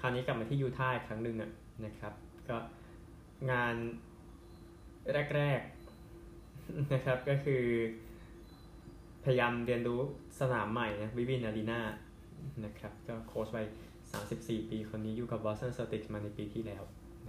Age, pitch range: 20-39, 110-125 Hz